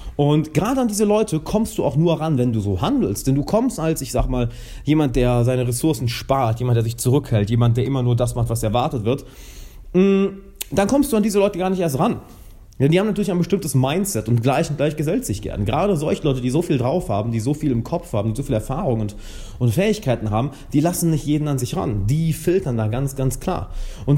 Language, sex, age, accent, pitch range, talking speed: German, male, 30-49, German, 110-165 Hz, 245 wpm